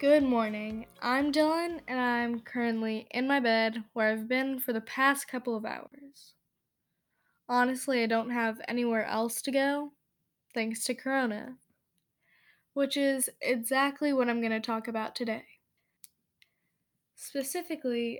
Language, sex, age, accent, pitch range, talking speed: English, female, 10-29, American, 230-270 Hz, 135 wpm